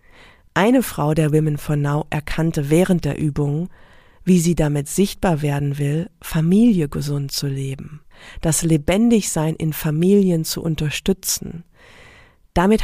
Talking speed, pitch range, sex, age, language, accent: 125 wpm, 150-190 Hz, female, 40-59, German, German